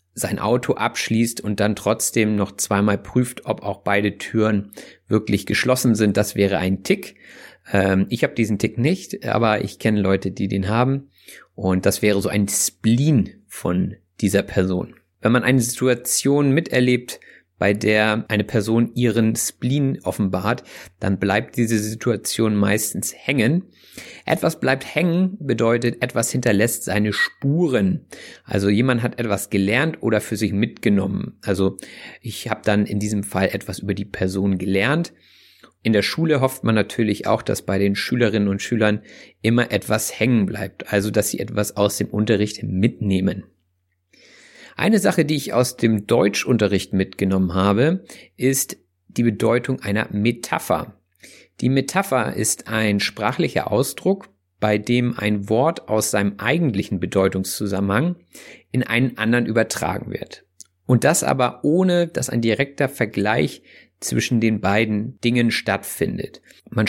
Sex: male